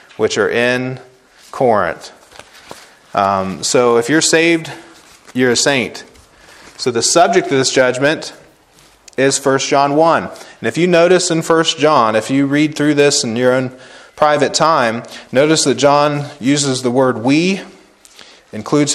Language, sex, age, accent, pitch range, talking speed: English, male, 30-49, American, 120-160 Hz, 150 wpm